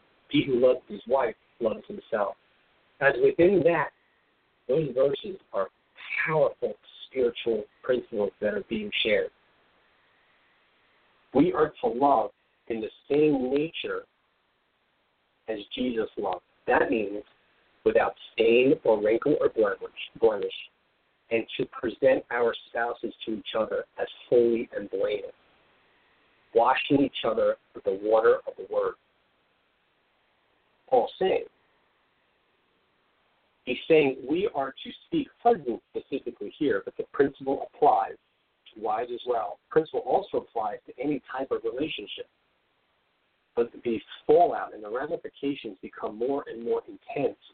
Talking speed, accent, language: 125 wpm, American, English